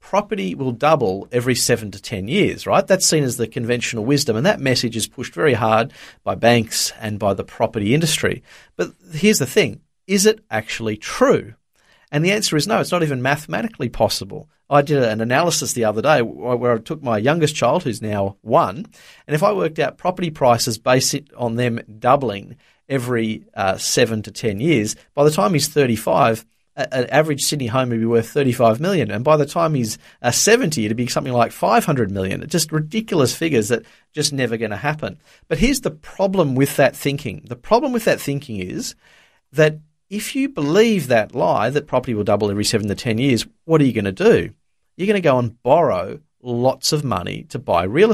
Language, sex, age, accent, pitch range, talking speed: English, male, 40-59, Australian, 115-155 Hz, 205 wpm